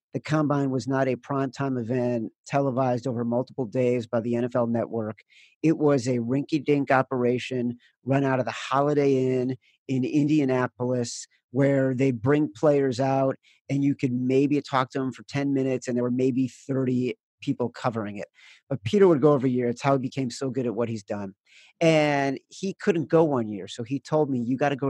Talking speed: 195 wpm